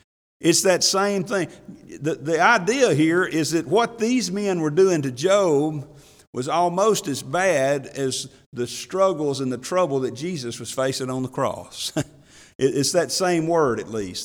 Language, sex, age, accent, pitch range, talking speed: English, male, 50-69, American, 130-190 Hz, 170 wpm